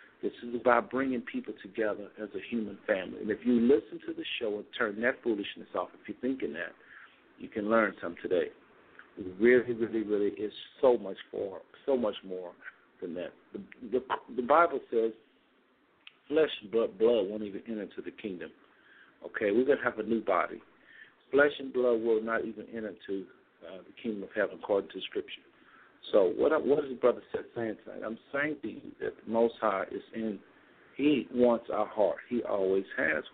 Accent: American